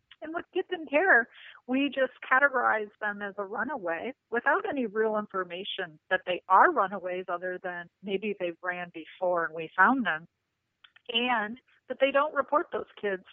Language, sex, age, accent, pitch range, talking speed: English, female, 40-59, American, 190-245 Hz, 165 wpm